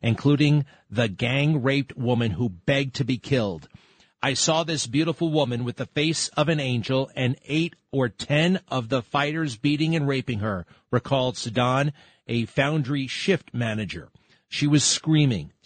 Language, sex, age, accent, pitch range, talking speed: English, male, 40-59, American, 120-150 Hz, 155 wpm